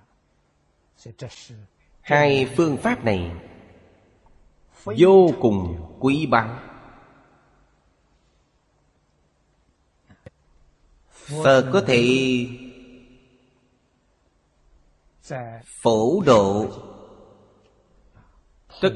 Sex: male